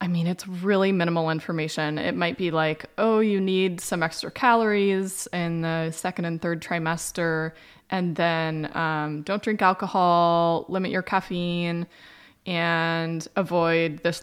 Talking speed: 145 wpm